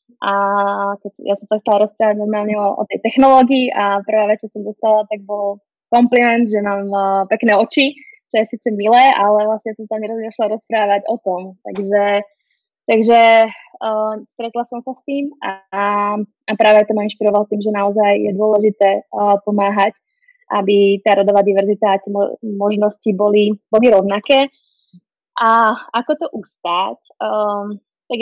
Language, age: Czech, 20-39